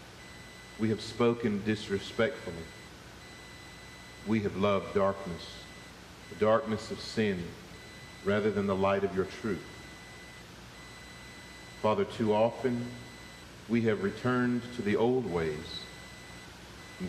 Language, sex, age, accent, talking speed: English, male, 50-69, American, 105 wpm